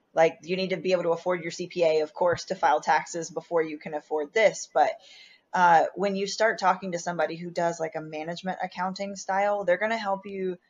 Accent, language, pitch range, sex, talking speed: American, English, 155-185 Hz, female, 225 wpm